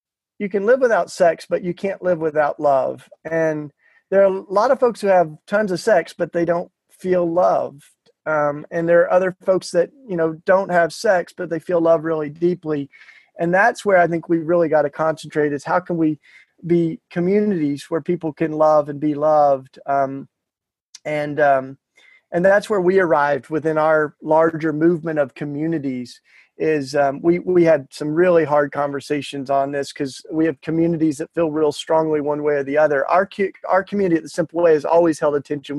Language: English